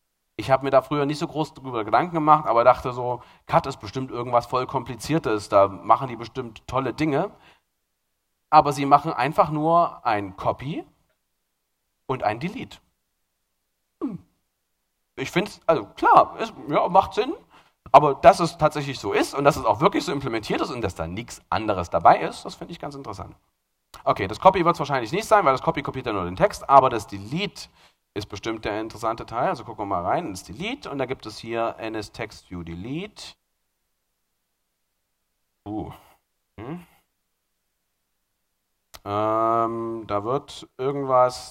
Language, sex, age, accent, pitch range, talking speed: German, male, 40-59, German, 110-160 Hz, 165 wpm